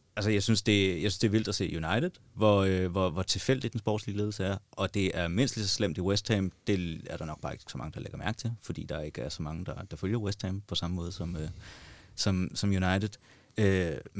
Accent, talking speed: native, 270 wpm